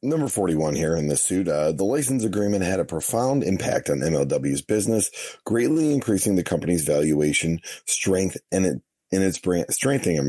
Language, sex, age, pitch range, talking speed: English, male, 30-49, 85-105 Hz, 175 wpm